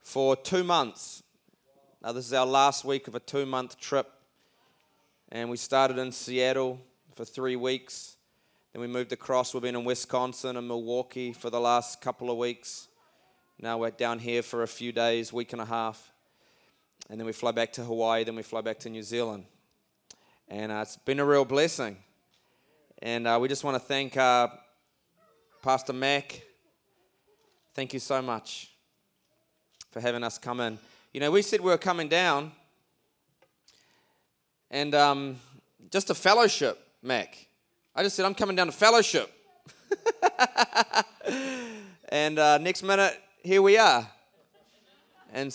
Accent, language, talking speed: Australian, English, 155 wpm